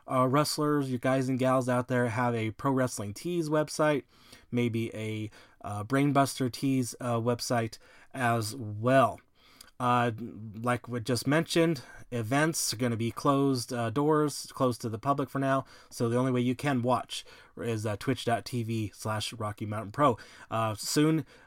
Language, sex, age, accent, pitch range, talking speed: English, male, 20-39, American, 115-145 Hz, 160 wpm